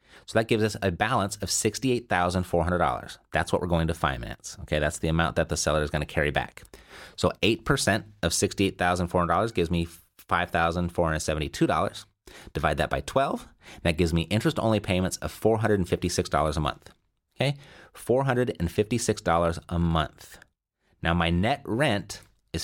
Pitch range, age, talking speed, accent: 85-105 Hz, 30-49, 150 wpm, American